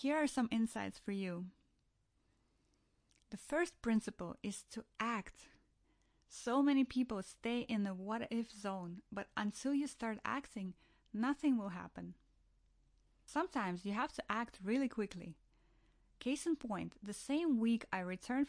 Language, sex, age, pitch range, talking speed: English, female, 30-49, 190-250 Hz, 140 wpm